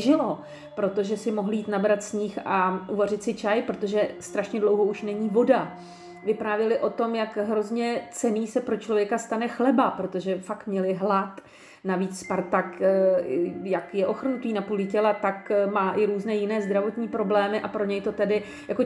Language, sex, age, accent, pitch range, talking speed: Czech, female, 40-59, native, 195-225 Hz, 165 wpm